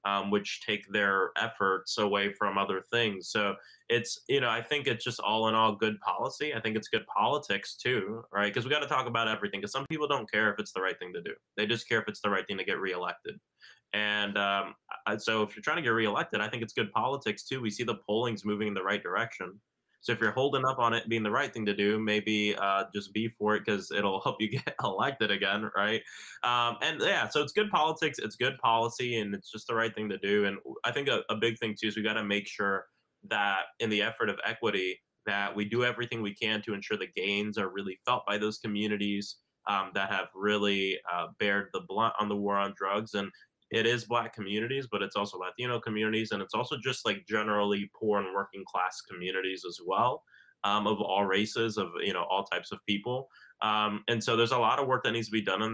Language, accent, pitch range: English, American, 100-115 Hz